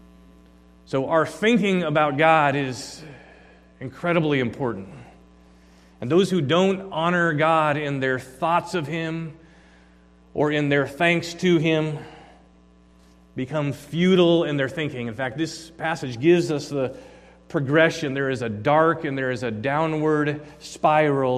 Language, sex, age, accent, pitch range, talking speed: English, male, 40-59, American, 130-160 Hz, 135 wpm